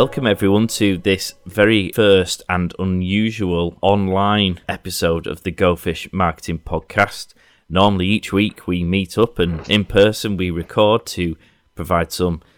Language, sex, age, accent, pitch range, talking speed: English, male, 30-49, British, 85-100 Hz, 140 wpm